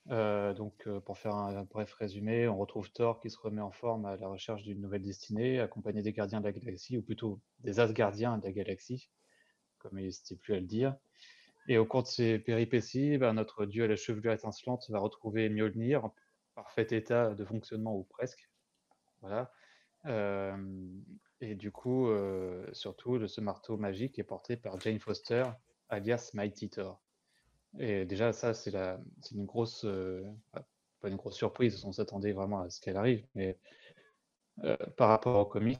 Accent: French